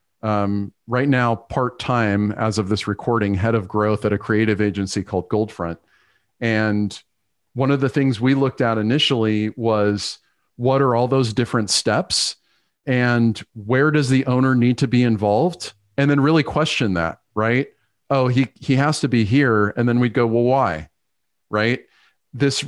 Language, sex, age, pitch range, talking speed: English, male, 40-59, 110-135 Hz, 165 wpm